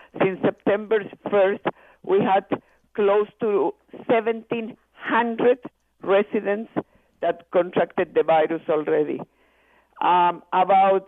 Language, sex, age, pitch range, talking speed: English, female, 50-69, 185-235 Hz, 85 wpm